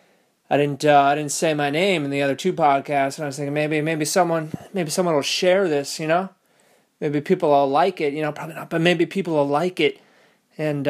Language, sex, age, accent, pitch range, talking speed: English, male, 20-39, American, 145-185 Hz, 235 wpm